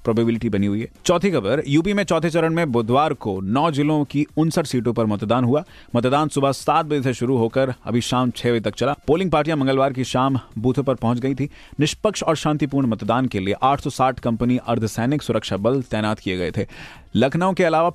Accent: native